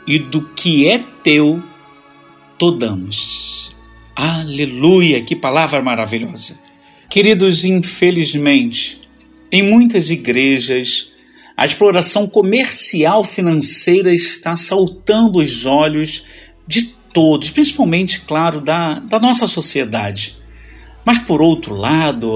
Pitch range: 135-205 Hz